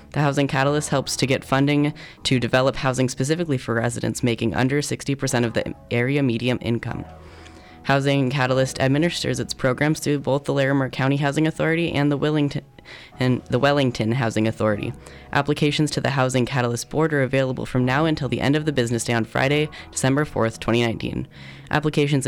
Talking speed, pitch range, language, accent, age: 170 wpm, 115-145 Hz, English, American, 10-29